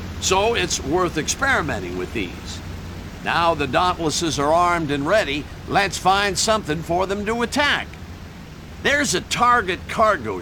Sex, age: male, 50-69